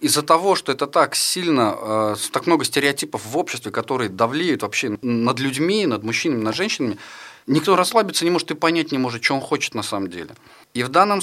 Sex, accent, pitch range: male, native, 110-150 Hz